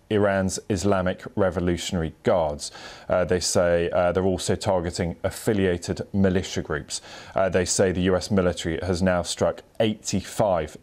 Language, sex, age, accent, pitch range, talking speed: English, male, 30-49, British, 85-95 Hz, 135 wpm